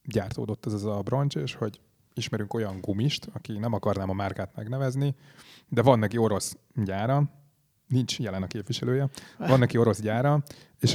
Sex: male